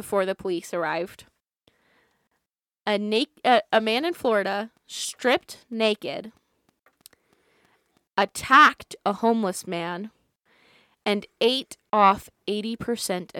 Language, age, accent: English, 20-39, American